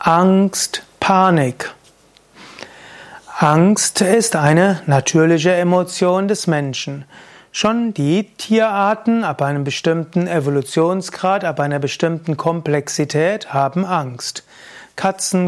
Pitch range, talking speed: 150-190 Hz, 90 wpm